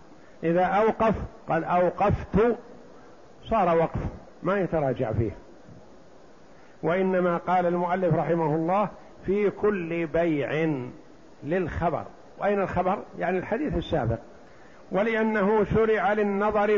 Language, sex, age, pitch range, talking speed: Arabic, male, 50-69, 170-200 Hz, 95 wpm